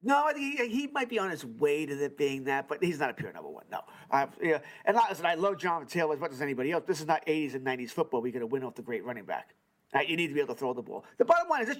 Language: English